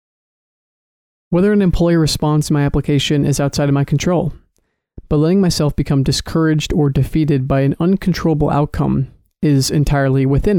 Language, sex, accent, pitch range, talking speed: English, male, American, 140-160 Hz, 145 wpm